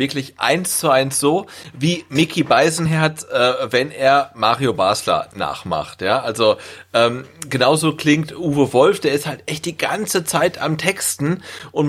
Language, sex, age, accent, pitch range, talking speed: German, male, 30-49, German, 130-155 Hz, 155 wpm